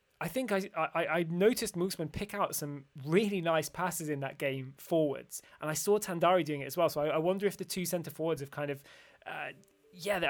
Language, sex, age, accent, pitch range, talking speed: English, male, 20-39, British, 150-185 Hz, 225 wpm